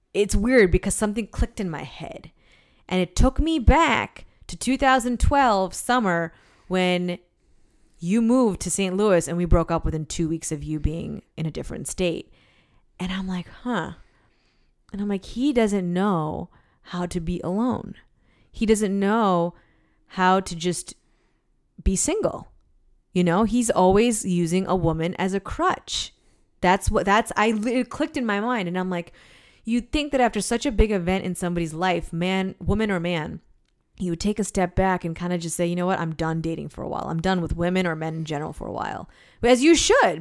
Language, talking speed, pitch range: English, 190 wpm, 170-220 Hz